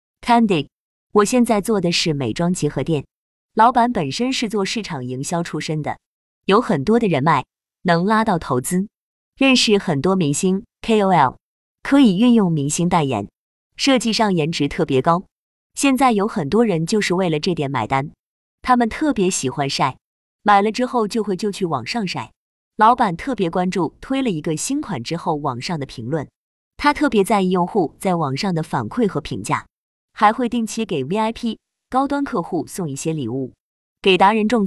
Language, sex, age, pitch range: Chinese, female, 20-39, 155-225 Hz